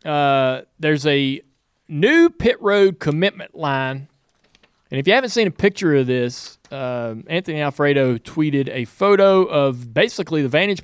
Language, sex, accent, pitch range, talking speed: English, male, American, 140-180 Hz, 150 wpm